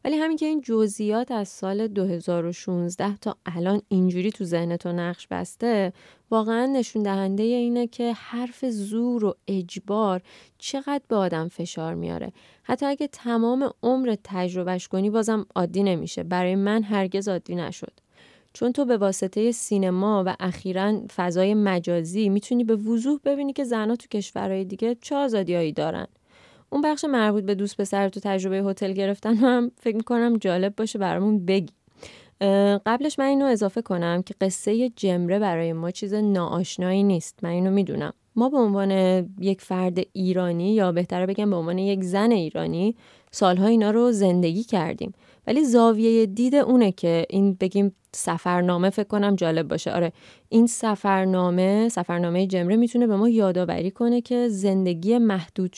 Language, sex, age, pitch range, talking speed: Persian, female, 20-39, 185-230 Hz, 150 wpm